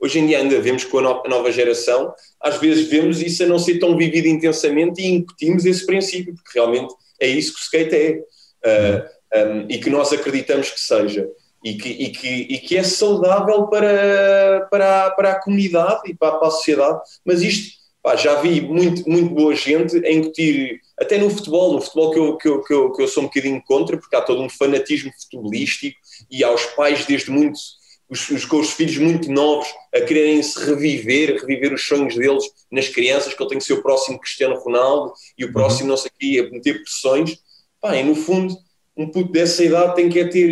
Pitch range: 150-195 Hz